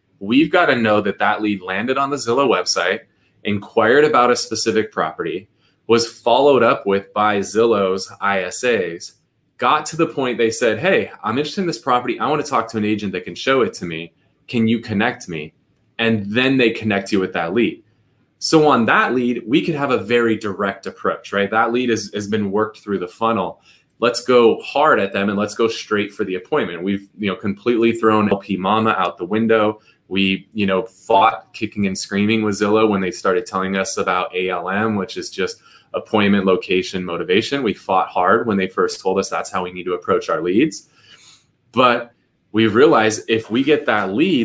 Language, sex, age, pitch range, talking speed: English, male, 20-39, 100-120 Hz, 205 wpm